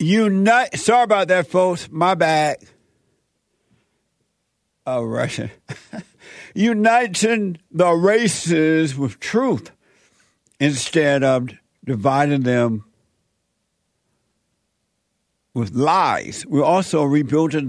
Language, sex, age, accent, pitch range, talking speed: English, male, 60-79, American, 140-185 Hz, 80 wpm